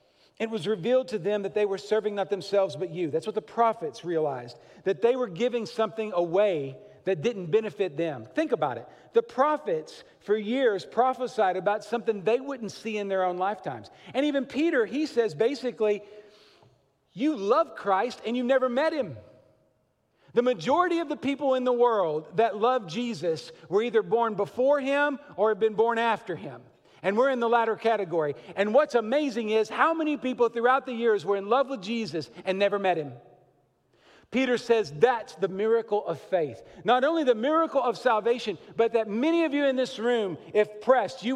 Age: 50-69